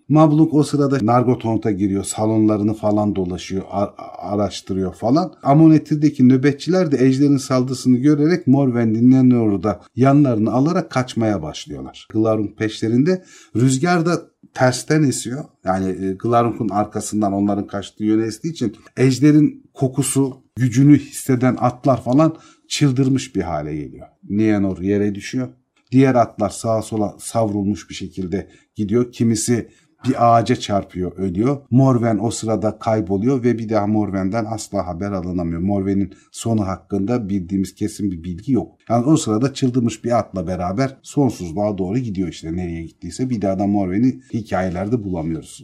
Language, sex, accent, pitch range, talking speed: Turkish, male, native, 100-135 Hz, 135 wpm